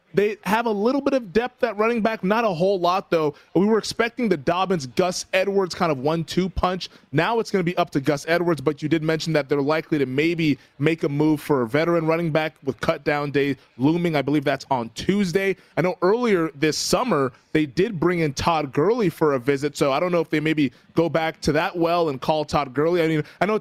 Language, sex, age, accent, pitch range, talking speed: English, male, 20-39, American, 150-180 Hz, 245 wpm